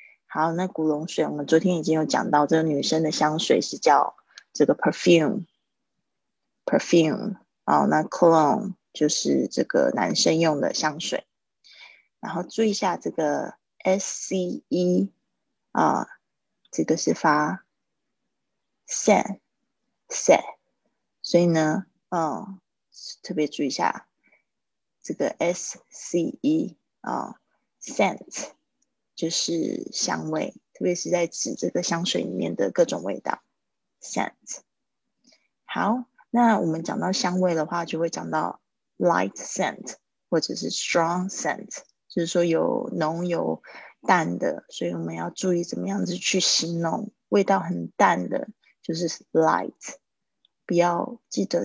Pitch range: 160-190 Hz